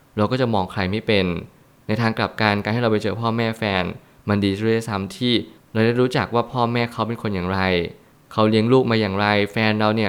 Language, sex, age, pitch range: Thai, male, 20-39, 100-120 Hz